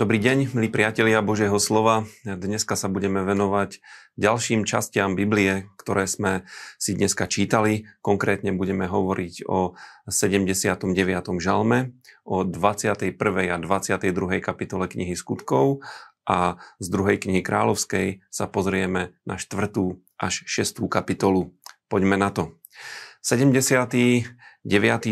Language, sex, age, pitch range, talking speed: Slovak, male, 40-59, 95-110 Hz, 110 wpm